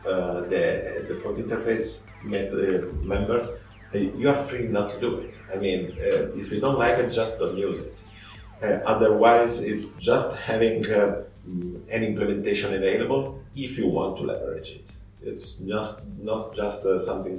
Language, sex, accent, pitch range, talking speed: Russian, male, Italian, 100-125 Hz, 175 wpm